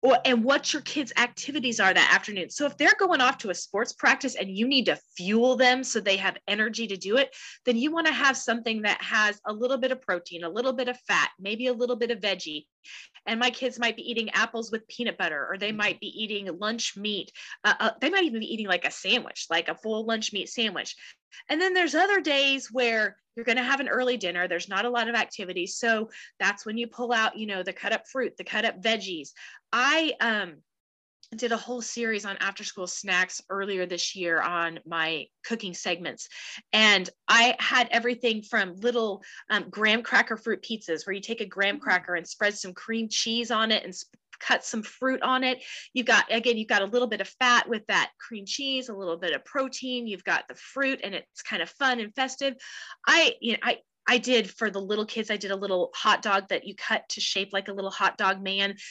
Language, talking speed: English, 230 wpm